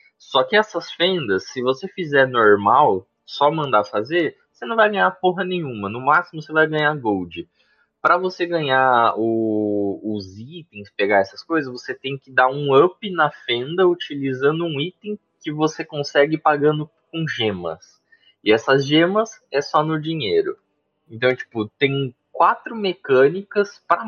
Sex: male